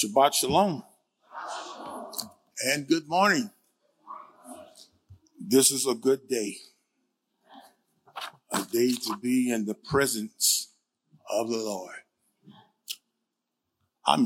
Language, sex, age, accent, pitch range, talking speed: English, male, 50-69, American, 115-155 Hz, 90 wpm